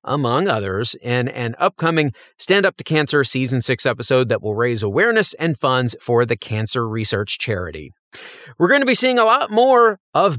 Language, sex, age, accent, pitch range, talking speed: English, male, 40-59, American, 130-190 Hz, 185 wpm